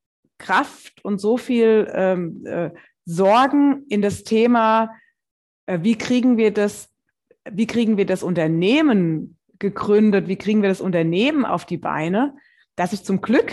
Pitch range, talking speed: 195-260 Hz, 130 wpm